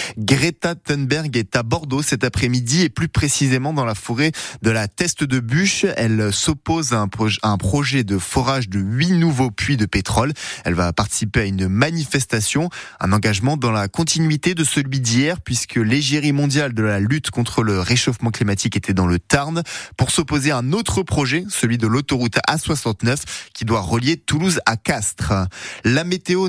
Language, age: French, 20-39